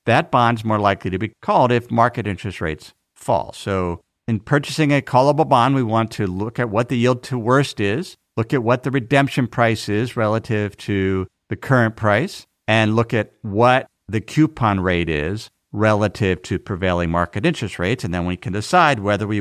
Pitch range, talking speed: 100-135 Hz, 195 wpm